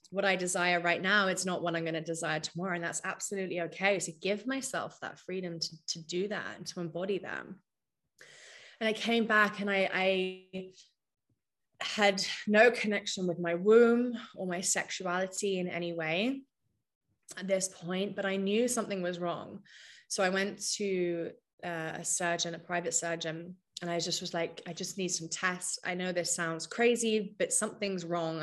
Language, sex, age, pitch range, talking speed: English, female, 20-39, 170-195 Hz, 180 wpm